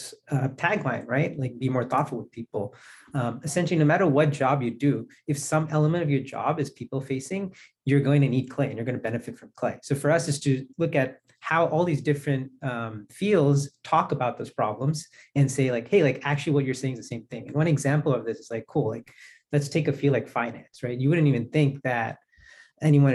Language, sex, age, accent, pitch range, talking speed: English, male, 30-49, American, 130-150 Hz, 235 wpm